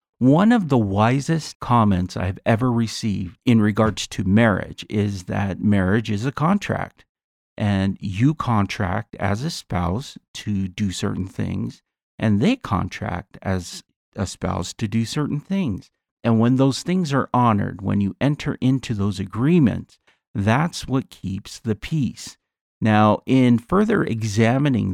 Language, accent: English, American